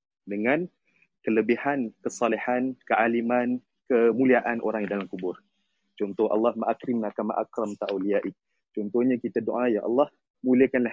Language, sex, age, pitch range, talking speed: Malay, male, 30-49, 115-160 Hz, 115 wpm